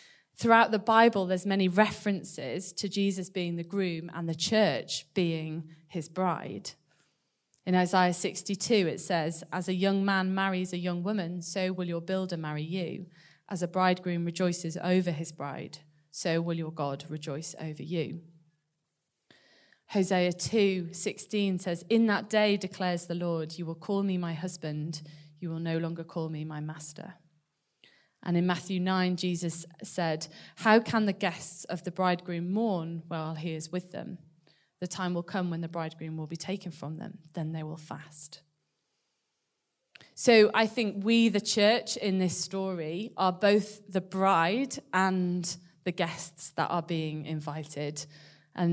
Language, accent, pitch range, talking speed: English, British, 160-190 Hz, 160 wpm